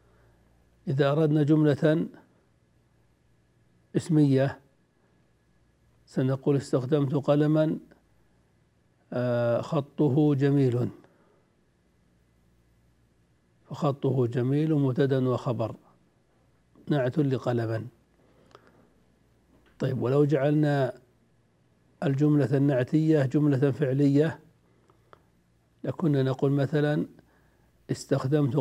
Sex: male